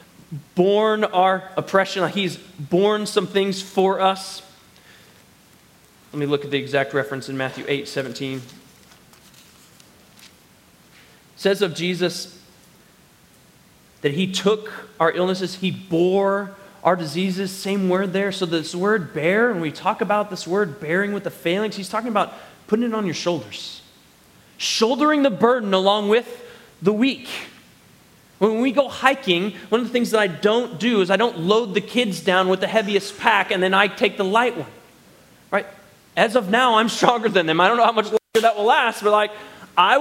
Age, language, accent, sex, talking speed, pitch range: 20-39, English, American, male, 170 wpm, 195-270 Hz